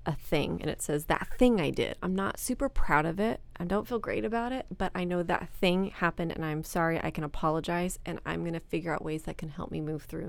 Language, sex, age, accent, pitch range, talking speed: English, female, 30-49, American, 145-175 Hz, 260 wpm